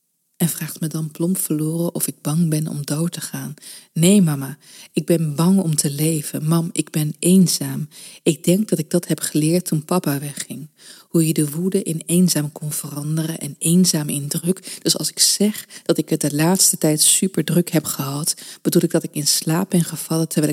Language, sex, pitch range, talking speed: Dutch, female, 150-170 Hz, 210 wpm